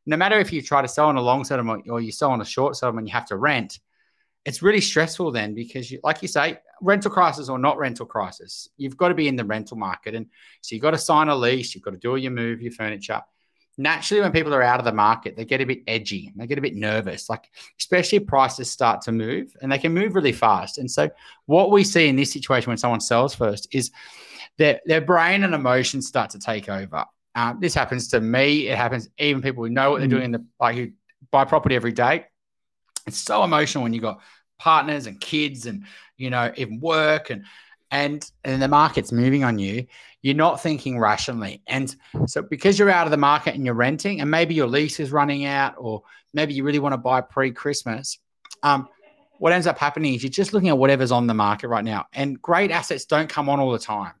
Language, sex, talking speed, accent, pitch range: English, male, 235 wpm, Australian, 120-155 Hz